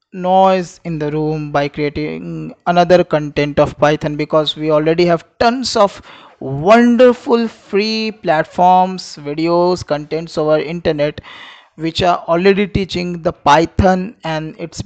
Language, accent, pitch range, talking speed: Hindi, native, 150-190 Hz, 125 wpm